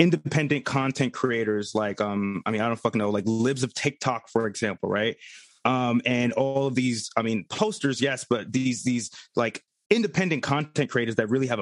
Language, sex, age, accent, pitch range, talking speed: English, male, 30-49, American, 120-150 Hz, 190 wpm